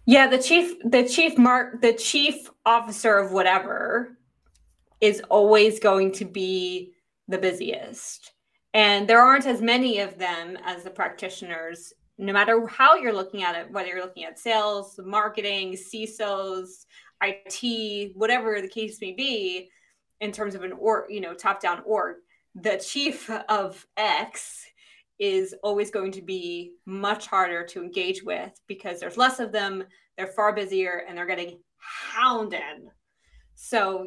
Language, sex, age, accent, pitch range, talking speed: English, female, 20-39, American, 185-235 Hz, 150 wpm